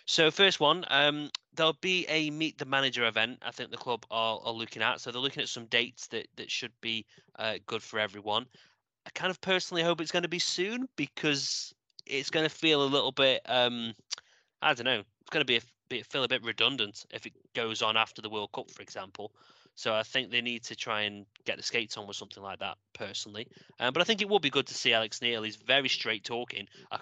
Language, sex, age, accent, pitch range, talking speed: English, male, 30-49, British, 110-140 Hz, 225 wpm